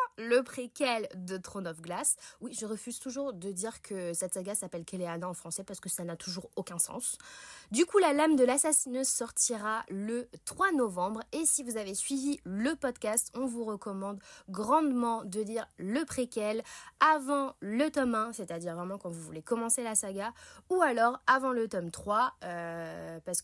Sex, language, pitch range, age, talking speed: female, French, 185-255 Hz, 20-39, 180 wpm